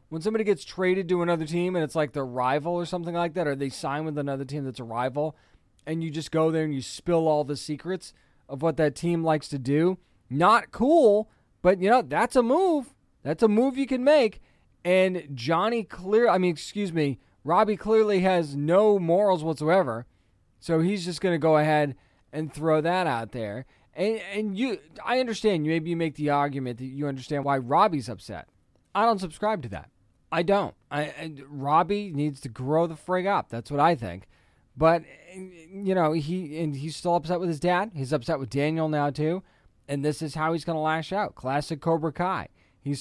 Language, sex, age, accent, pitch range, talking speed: English, male, 20-39, American, 140-180 Hz, 205 wpm